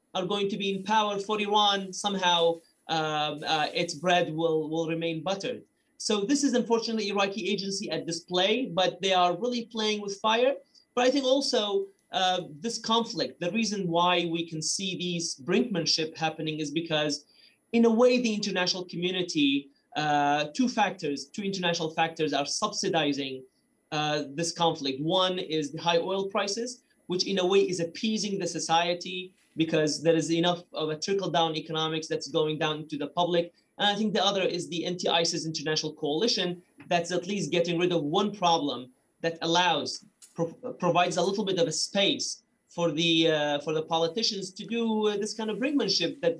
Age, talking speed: 30-49, 175 wpm